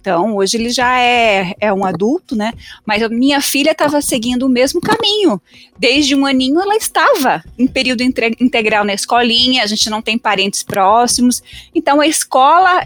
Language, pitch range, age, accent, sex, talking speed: Portuguese, 210-265 Hz, 20-39, Brazilian, female, 175 wpm